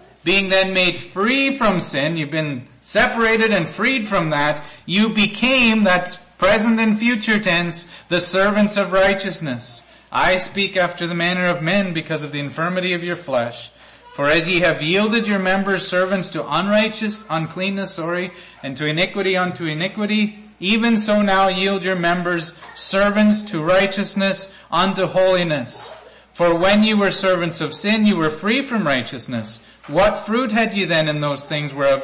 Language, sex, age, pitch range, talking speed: English, male, 30-49, 170-220 Hz, 165 wpm